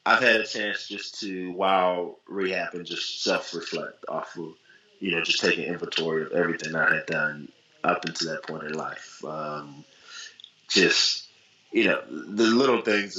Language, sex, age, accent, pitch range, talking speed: English, male, 20-39, American, 80-95 Hz, 160 wpm